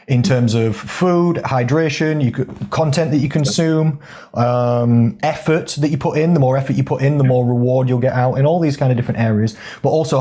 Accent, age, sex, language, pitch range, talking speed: British, 30-49, male, English, 120-155 Hz, 220 wpm